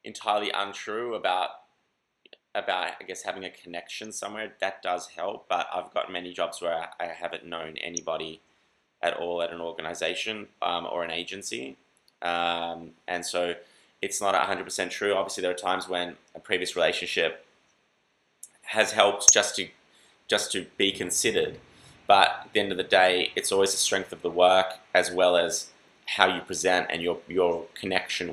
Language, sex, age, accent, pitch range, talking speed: English, male, 20-39, Australian, 85-95 Hz, 175 wpm